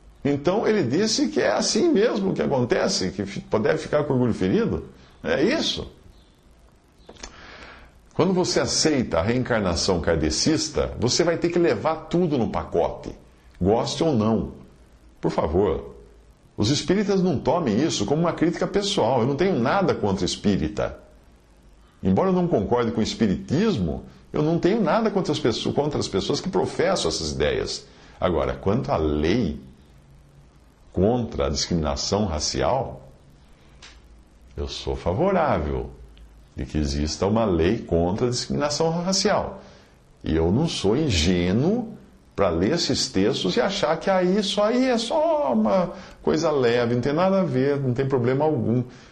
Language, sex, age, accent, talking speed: Portuguese, male, 50-69, Brazilian, 145 wpm